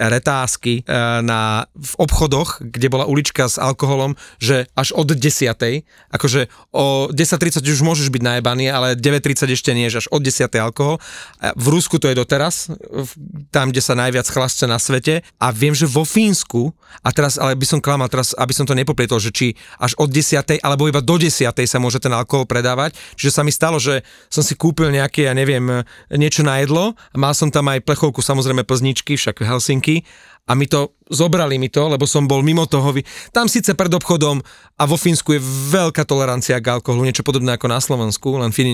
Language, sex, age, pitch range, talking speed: Slovak, male, 30-49, 125-150 Hz, 190 wpm